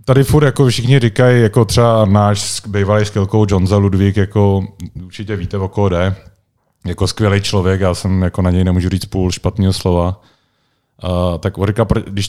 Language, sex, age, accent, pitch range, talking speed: Czech, male, 30-49, native, 95-115 Hz, 170 wpm